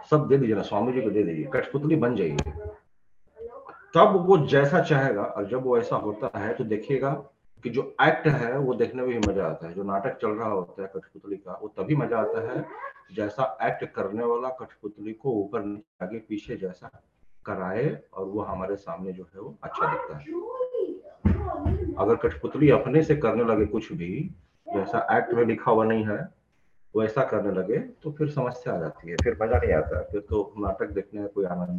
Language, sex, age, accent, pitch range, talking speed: Hindi, male, 40-59, native, 100-145 Hz, 180 wpm